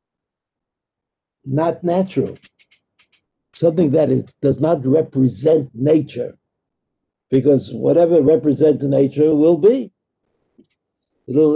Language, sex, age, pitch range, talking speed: English, male, 70-89, 135-170 Hz, 85 wpm